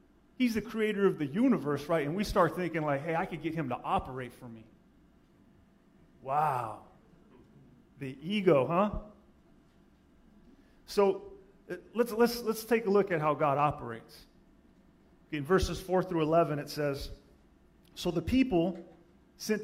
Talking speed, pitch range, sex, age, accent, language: 145 wpm, 145-195 Hz, male, 30-49, American, English